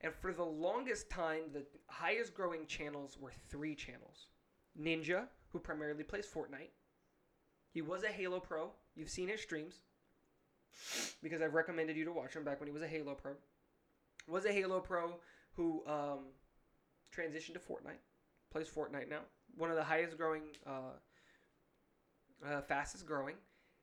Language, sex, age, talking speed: English, male, 20-39, 145 wpm